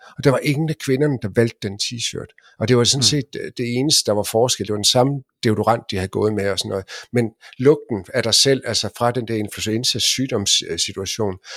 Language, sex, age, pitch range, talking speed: Danish, male, 50-69, 105-135 Hz, 230 wpm